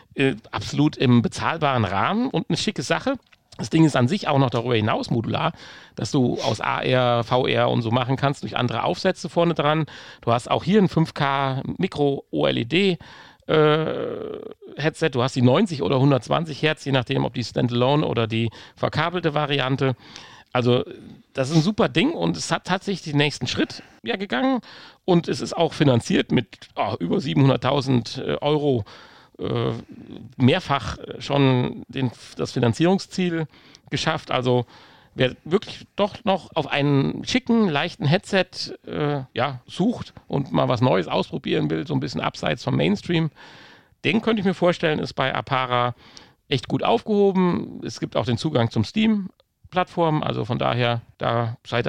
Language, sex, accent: German, male, German